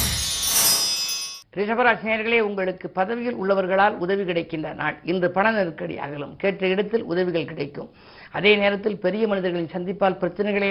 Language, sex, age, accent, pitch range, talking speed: Tamil, female, 50-69, native, 170-205 Hz, 120 wpm